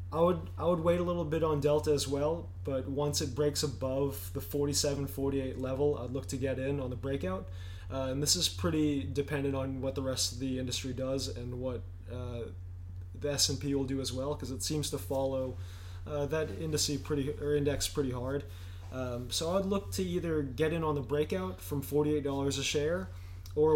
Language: English